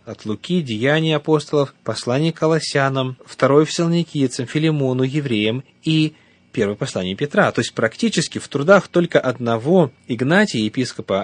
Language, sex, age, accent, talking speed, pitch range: Russian, male, 30-49, native, 125 wpm, 110-150 Hz